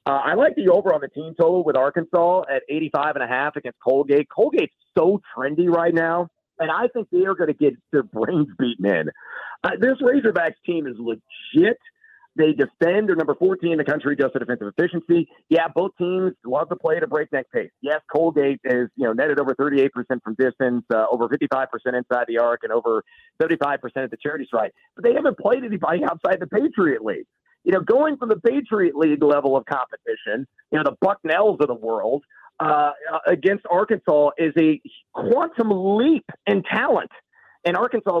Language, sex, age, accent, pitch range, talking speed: English, male, 40-59, American, 125-200 Hz, 190 wpm